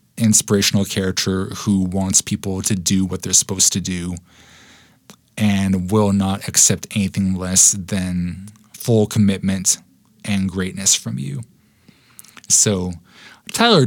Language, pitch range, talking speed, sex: English, 95-115 Hz, 115 wpm, male